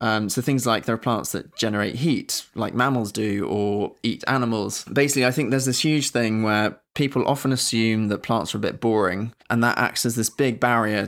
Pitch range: 105-125 Hz